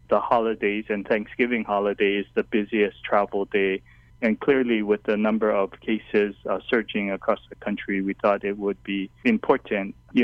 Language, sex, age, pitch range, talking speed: English, male, 20-39, 105-125 Hz, 165 wpm